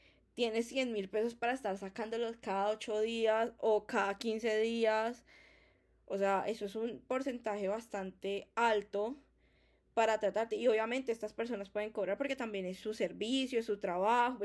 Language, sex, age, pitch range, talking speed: Spanish, female, 10-29, 205-235 Hz, 160 wpm